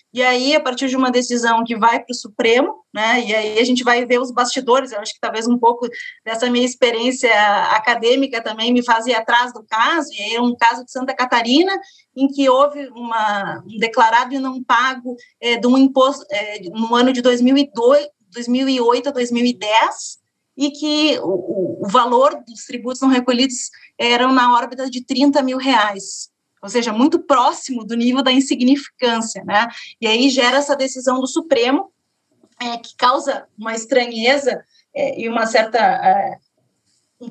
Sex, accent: female, Brazilian